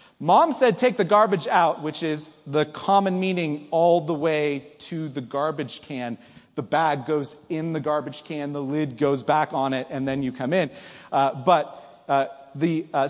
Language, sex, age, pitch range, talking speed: English, male, 30-49, 155-220 Hz, 190 wpm